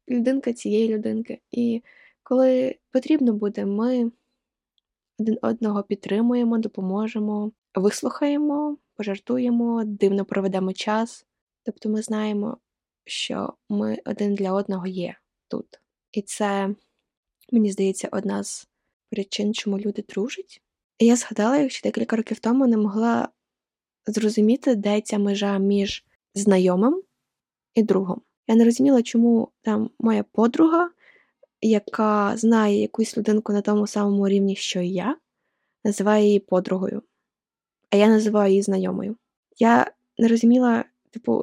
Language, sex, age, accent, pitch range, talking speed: Ukrainian, female, 20-39, native, 205-245 Hz, 120 wpm